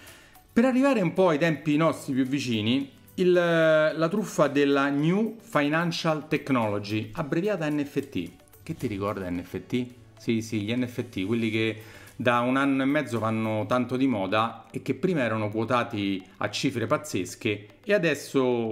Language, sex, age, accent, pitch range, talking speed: Italian, male, 40-59, native, 110-145 Hz, 150 wpm